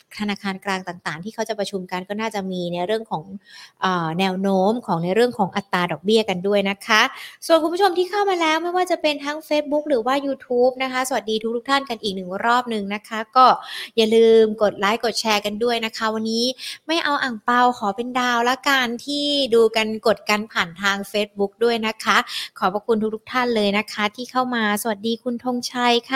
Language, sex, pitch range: Thai, female, 205-260 Hz